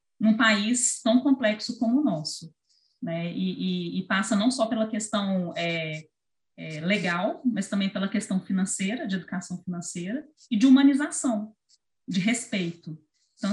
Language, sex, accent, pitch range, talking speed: Portuguese, female, Brazilian, 190-240 Hz, 145 wpm